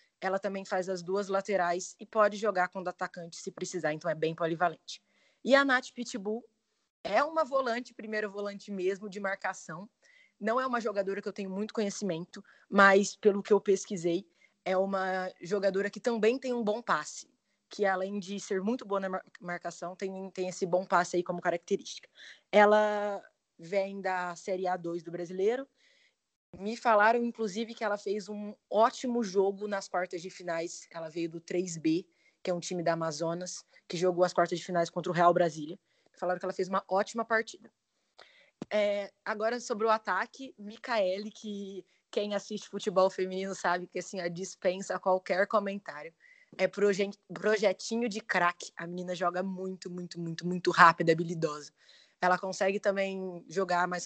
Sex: female